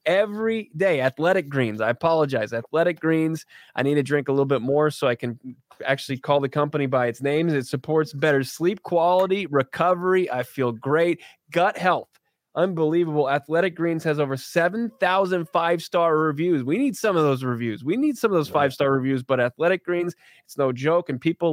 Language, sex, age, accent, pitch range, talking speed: English, male, 20-39, American, 140-180 Hz, 185 wpm